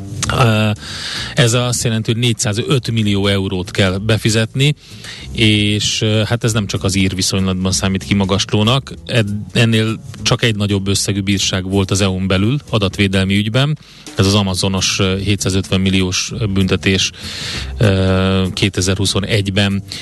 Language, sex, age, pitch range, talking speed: Hungarian, male, 30-49, 100-125 Hz, 110 wpm